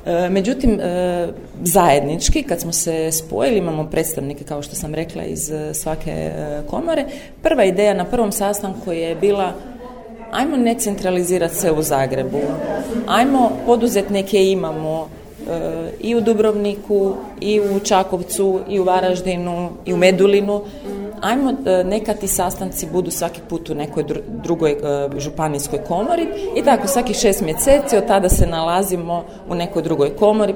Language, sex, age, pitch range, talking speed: Croatian, female, 30-49, 155-205 Hz, 140 wpm